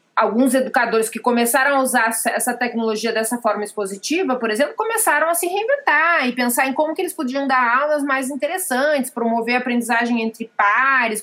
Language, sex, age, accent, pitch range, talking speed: Portuguese, female, 30-49, Brazilian, 220-275 Hz, 170 wpm